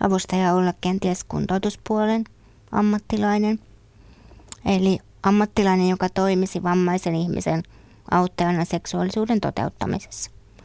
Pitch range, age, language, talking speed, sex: 155-190 Hz, 20-39, Finnish, 80 wpm, female